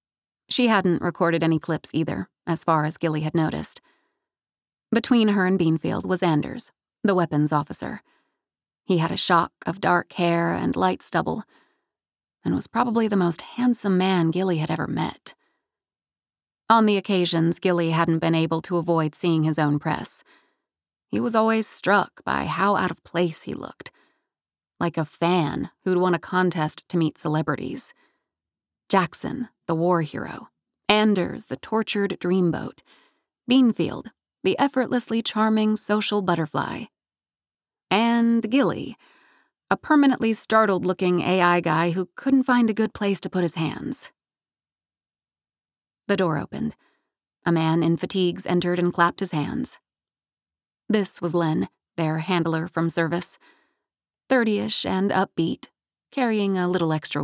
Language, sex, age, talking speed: English, female, 30-49, 140 wpm